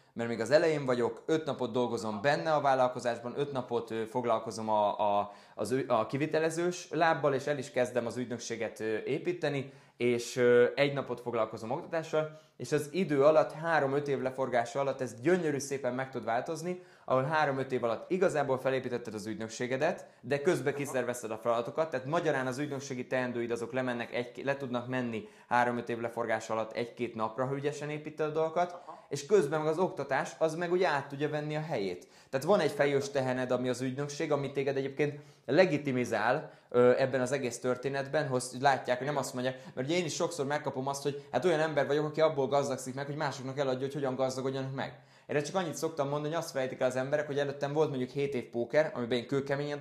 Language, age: Hungarian, 20-39